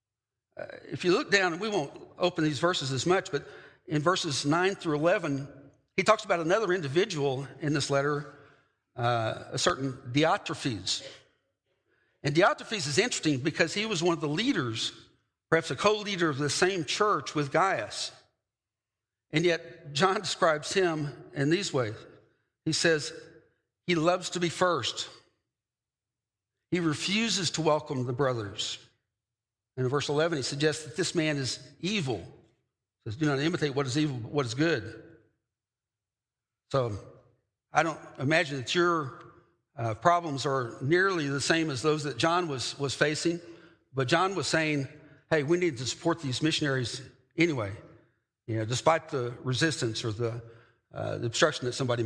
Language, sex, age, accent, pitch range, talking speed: English, male, 60-79, American, 120-165 Hz, 155 wpm